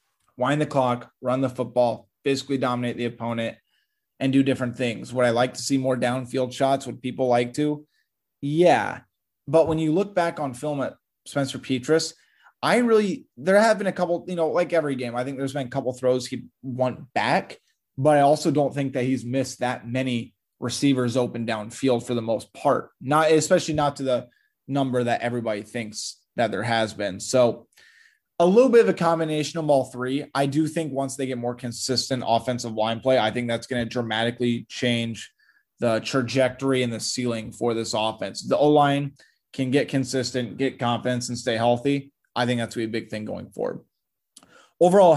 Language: English